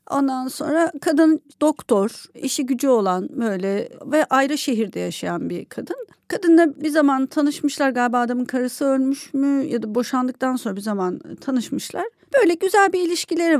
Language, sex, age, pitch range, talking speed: Turkish, female, 40-59, 225-295 Hz, 150 wpm